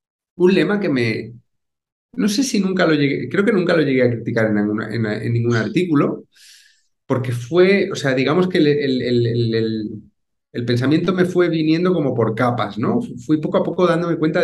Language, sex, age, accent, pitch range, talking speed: Spanish, male, 30-49, Spanish, 115-175 Hz, 180 wpm